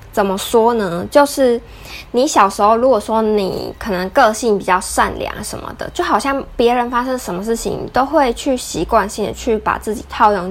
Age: 20-39